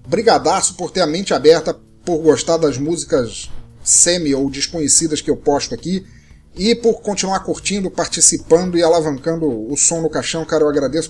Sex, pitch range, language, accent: male, 155-215 Hz, Portuguese, Brazilian